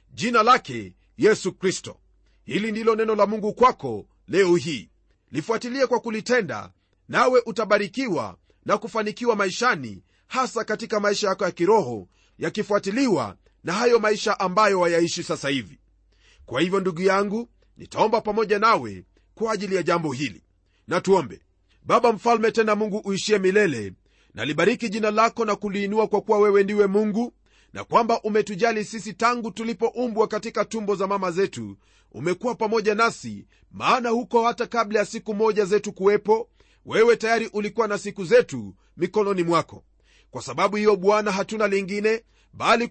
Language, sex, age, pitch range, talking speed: Swahili, male, 40-59, 180-225 Hz, 145 wpm